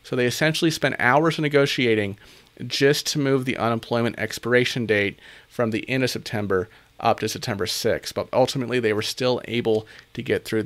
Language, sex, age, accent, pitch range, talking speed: English, male, 40-59, American, 110-135 Hz, 175 wpm